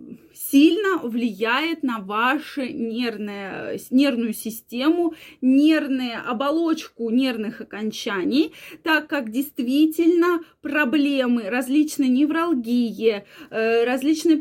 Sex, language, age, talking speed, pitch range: female, Russian, 20-39, 70 wpm, 245-310 Hz